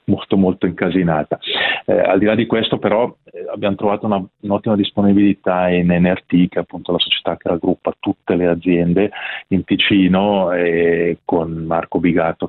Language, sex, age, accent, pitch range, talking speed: Italian, male, 30-49, native, 90-105 Hz, 170 wpm